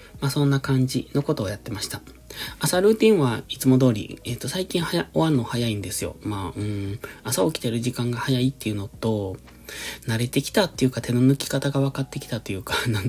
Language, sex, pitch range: Japanese, male, 105-135 Hz